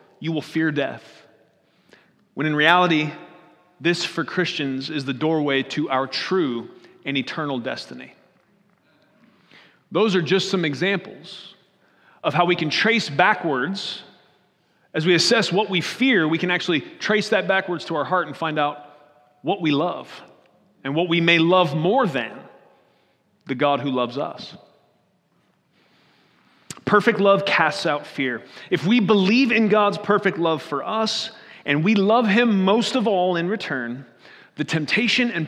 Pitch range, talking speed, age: 145-200 Hz, 150 wpm, 30-49